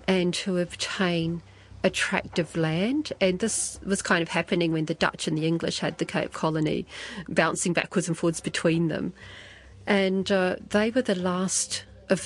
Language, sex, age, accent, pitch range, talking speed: English, female, 40-59, Australian, 165-195 Hz, 165 wpm